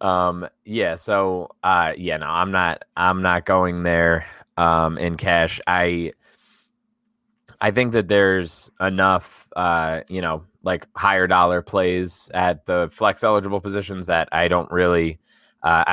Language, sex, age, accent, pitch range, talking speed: English, male, 20-39, American, 85-100 Hz, 145 wpm